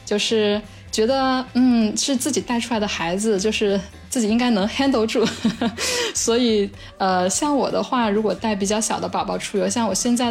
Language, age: Chinese, 20-39